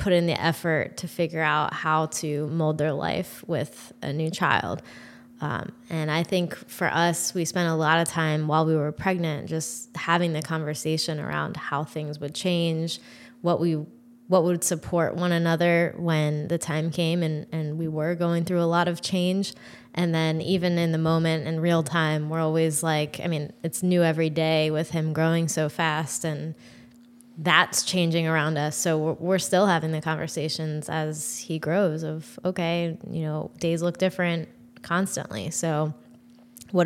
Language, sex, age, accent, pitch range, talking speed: English, female, 20-39, American, 155-170 Hz, 175 wpm